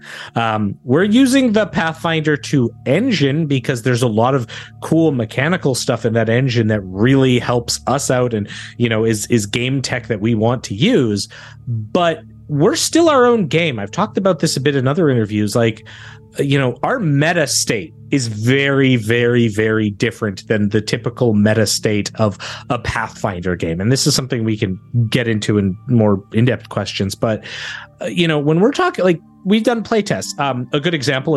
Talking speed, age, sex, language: 185 wpm, 30-49, male, English